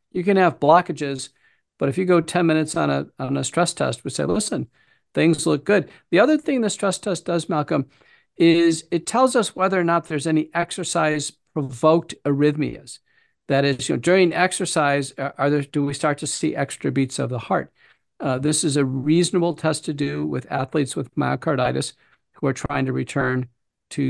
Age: 50-69